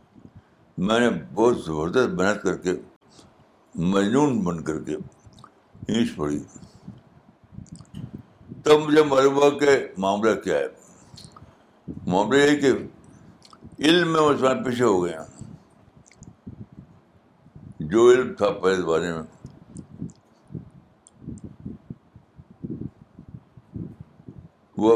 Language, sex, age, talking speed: Urdu, male, 60-79, 90 wpm